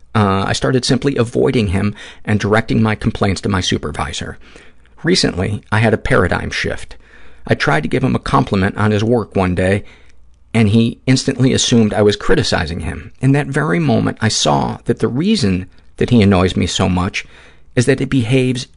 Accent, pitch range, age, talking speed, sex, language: American, 90-115 Hz, 50-69, 185 wpm, male, English